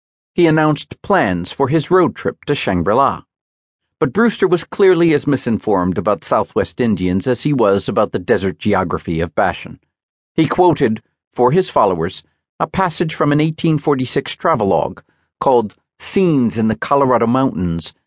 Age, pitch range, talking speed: 50-69, 100-155 Hz, 145 wpm